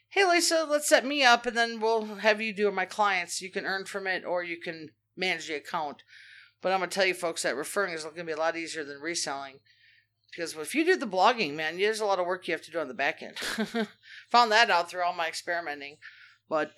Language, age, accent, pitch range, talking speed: English, 40-59, American, 185-260 Hz, 255 wpm